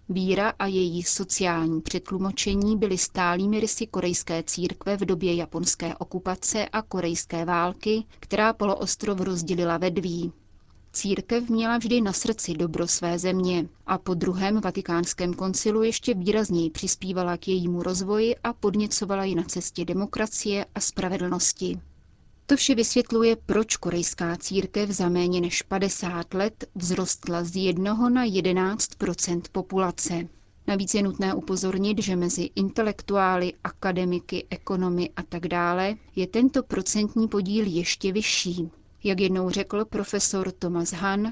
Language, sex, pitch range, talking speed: Czech, female, 175-210 Hz, 130 wpm